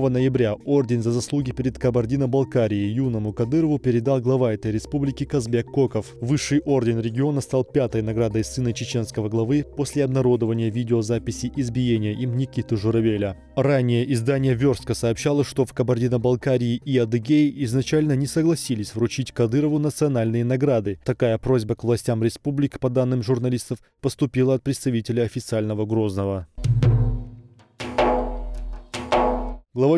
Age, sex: 20-39, male